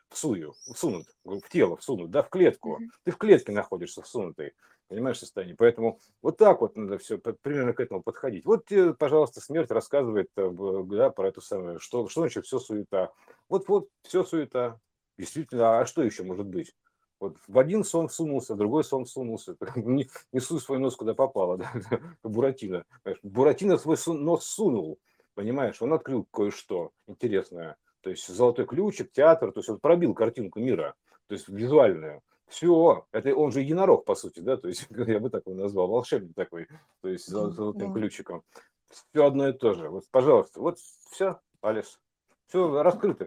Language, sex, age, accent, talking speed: Russian, male, 50-69, native, 170 wpm